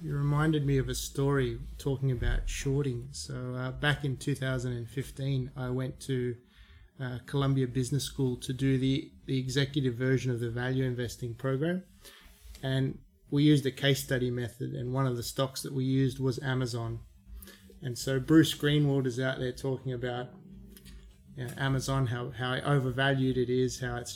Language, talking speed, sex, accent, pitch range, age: English, 170 wpm, male, Australian, 125-140 Hz, 20-39